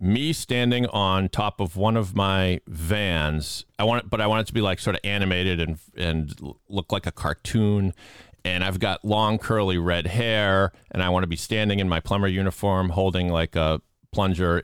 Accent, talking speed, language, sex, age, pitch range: American, 200 wpm, English, male, 40-59, 90-110 Hz